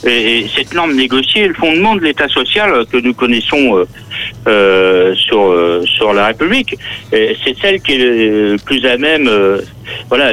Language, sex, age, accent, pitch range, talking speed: French, male, 60-79, French, 110-150 Hz, 175 wpm